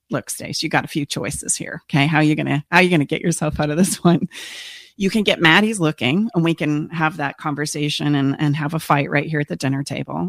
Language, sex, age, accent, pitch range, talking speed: English, female, 30-49, American, 140-170 Hz, 265 wpm